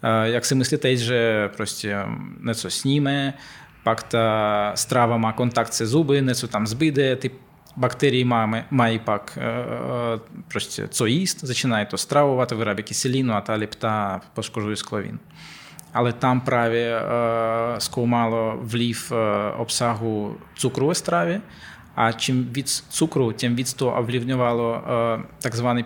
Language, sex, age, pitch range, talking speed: Czech, male, 20-39, 115-135 Hz, 125 wpm